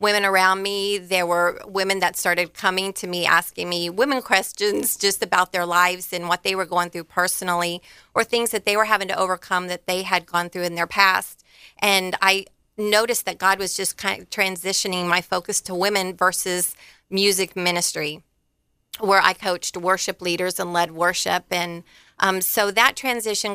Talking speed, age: 185 wpm, 30-49